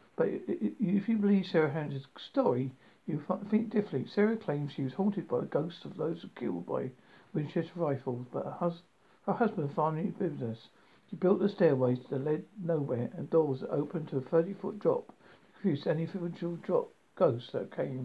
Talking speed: 180 wpm